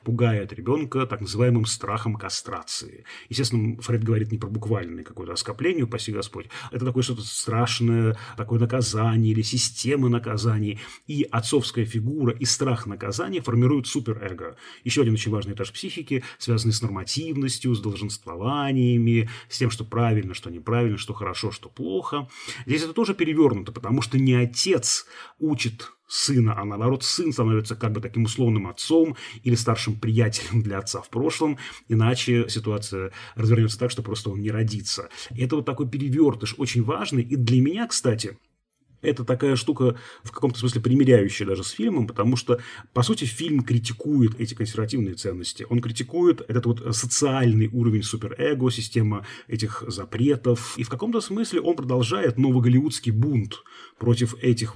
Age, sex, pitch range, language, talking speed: 30-49, male, 110-130 Hz, Russian, 150 wpm